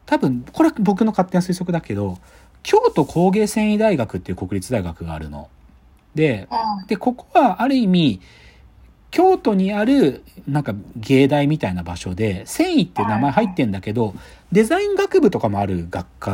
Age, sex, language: 40-59, male, Japanese